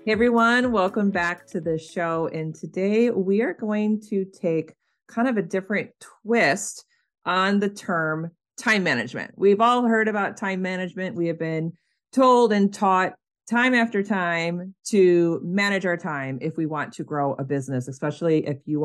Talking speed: 170 wpm